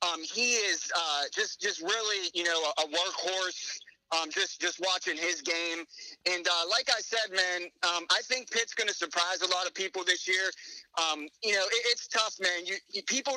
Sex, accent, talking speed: male, American, 200 wpm